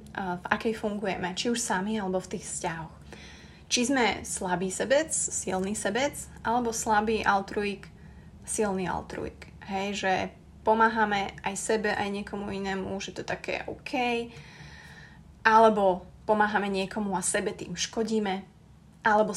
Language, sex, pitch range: Slovak, female, 190-220 Hz